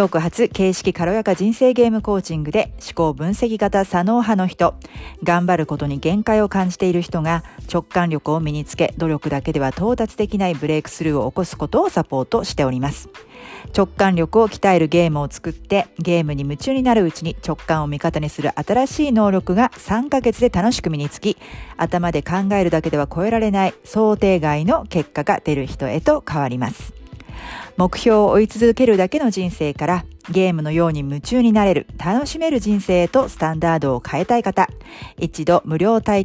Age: 40-59